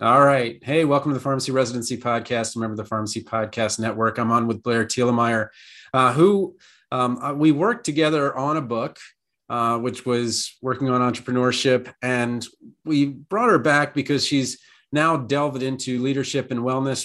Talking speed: 160 wpm